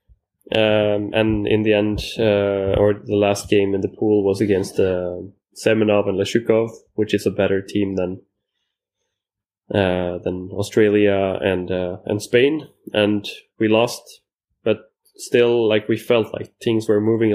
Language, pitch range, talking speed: German, 100-110 Hz, 150 wpm